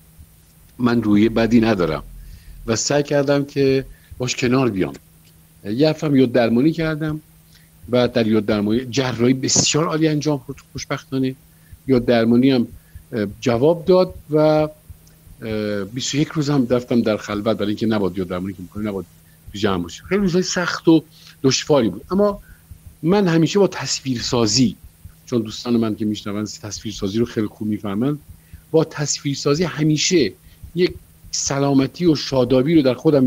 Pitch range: 100-150 Hz